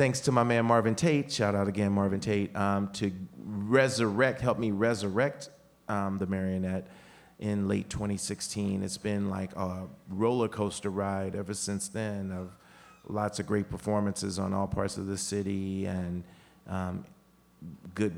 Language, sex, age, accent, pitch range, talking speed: English, male, 30-49, American, 95-105 Hz, 155 wpm